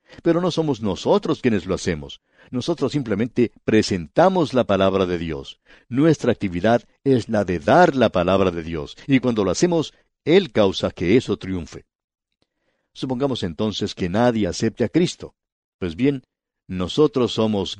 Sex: male